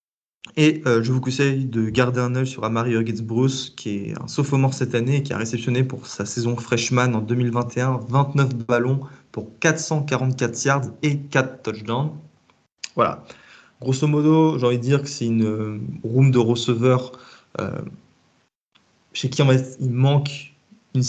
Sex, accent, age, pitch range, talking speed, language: male, French, 20-39, 115-130 Hz, 165 wpm, French